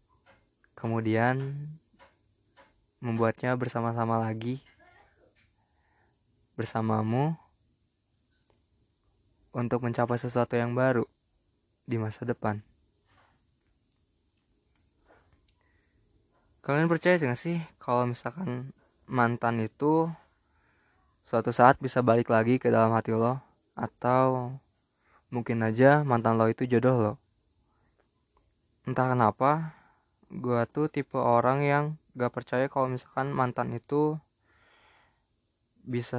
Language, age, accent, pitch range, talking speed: Indonesian, 20-39, native, 110-130 Hz, 90 wpm